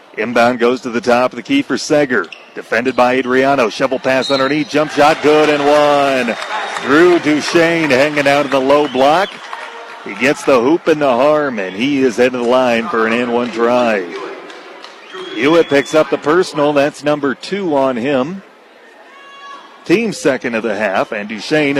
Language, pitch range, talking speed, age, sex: English, 130-155 Hz, 180 wpm, 40-59, male